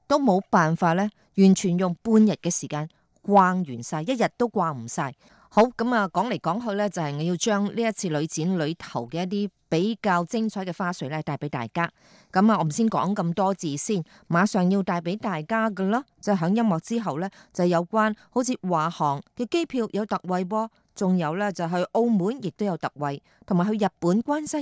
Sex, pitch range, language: female, 155-215 Hz, Chinese